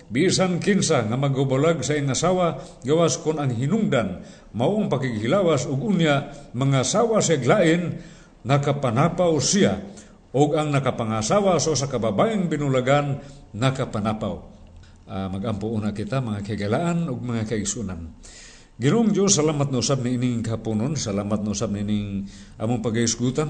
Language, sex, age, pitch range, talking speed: Filipino, male, 50-69, 110-155 Hz, 125 wpm